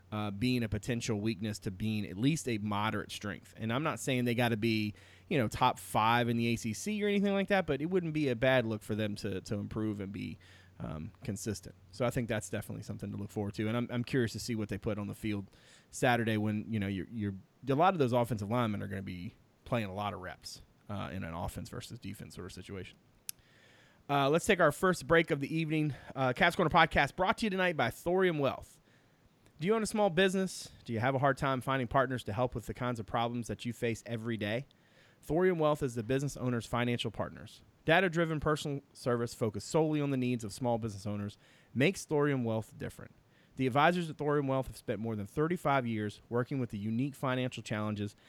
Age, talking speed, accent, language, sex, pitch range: 30-49, 230 wpm, American, English, male, 105-145 Hz